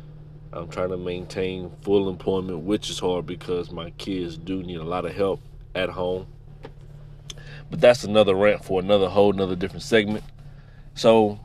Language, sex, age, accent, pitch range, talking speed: English, male, 30-49, American, 95-140 Hz, 160 wpm